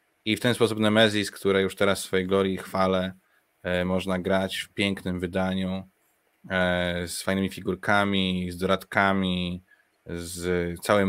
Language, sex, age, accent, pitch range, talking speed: Polish, male, 20-39, native, 90-100 Hz, 130 wpm